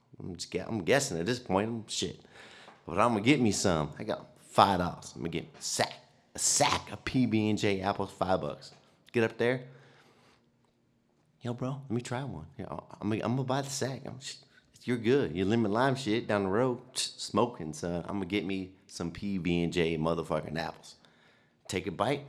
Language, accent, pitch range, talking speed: English, American, 105-140 Hz, 190 wpm